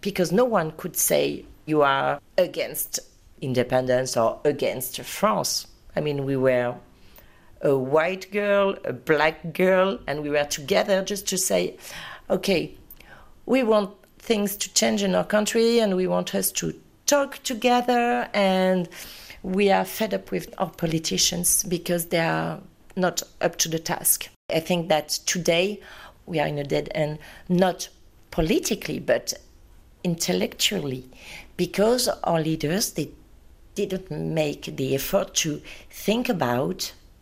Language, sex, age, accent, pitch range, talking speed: English, female, 40-59, French, 145-195 Hz, 140 wpm